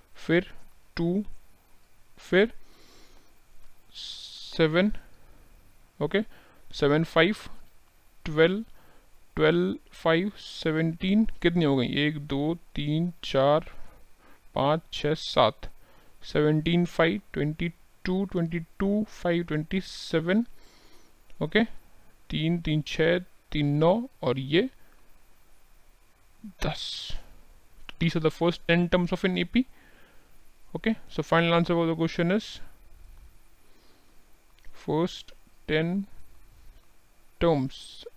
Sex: male